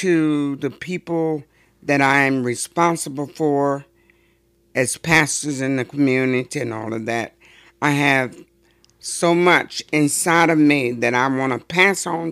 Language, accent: English, American